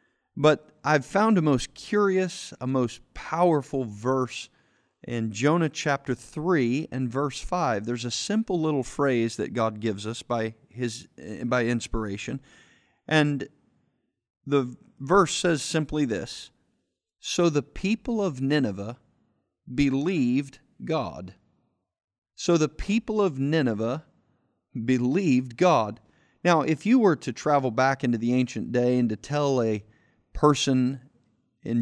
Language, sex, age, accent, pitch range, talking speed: English, male, 40-59, American, 125-165 Hz, 125 wpm